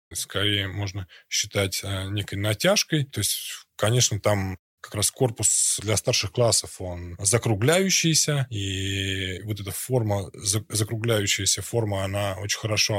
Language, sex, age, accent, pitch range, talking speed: Russian, male, 20-39, native, 105-125 Hz, 125 wpm